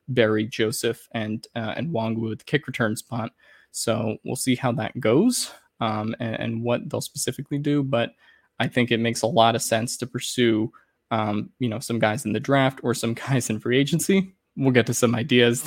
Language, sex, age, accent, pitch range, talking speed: English, male, 20-39, American, 110-130 Hz, 205 wpm